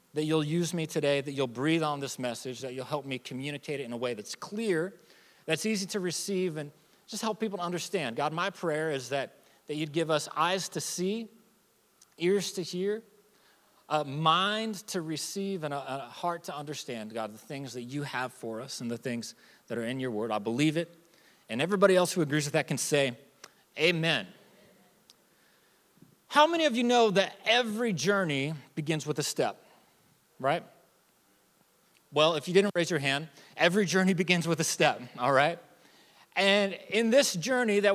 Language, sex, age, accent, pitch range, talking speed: English, male, 30-49, American, 145-200 Hz, 185 wpm